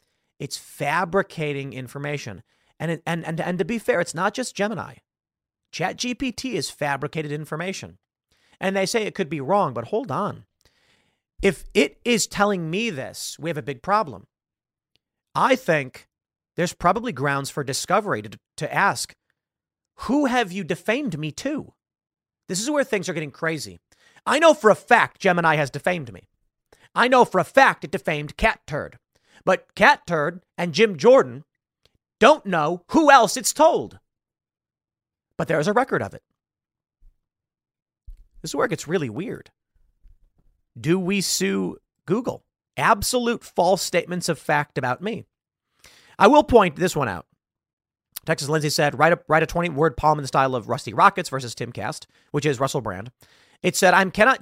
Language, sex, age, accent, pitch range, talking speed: English, male, 40-59, American, 145-200 Hz, 165 wpm